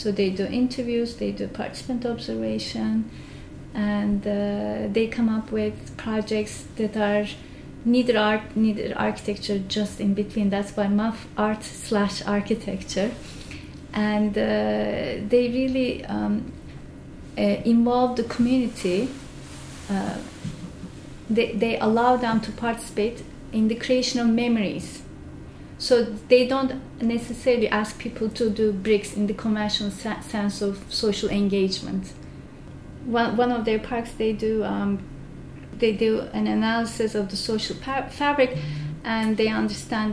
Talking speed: 130 wpm